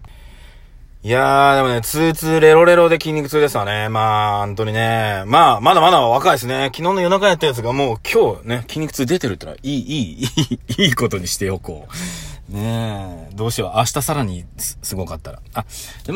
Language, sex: Japanese, male